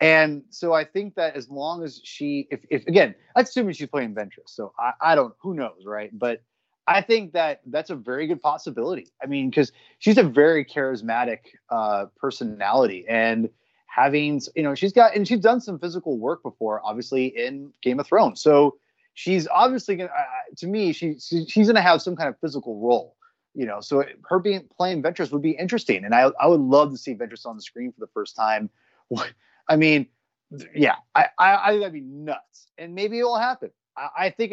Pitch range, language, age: 135-200 Hz, English, 30-49